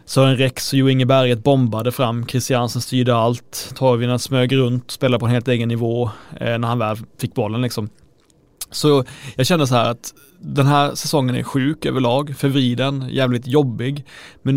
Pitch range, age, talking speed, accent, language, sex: 115-140 Hz, 30-49, 175 wpm, native, Swedish, male